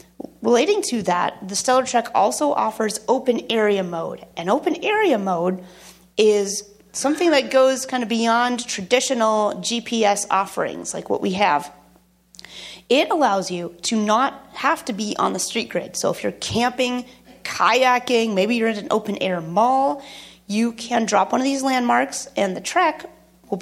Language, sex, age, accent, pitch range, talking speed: English, female, 30-49, American, 200-265 Hz, 165 wpm